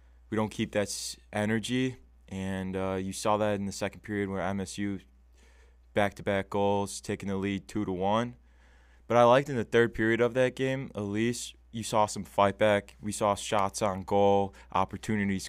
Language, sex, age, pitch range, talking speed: English, male, 20-39, 90-105 Hz, 190 wpm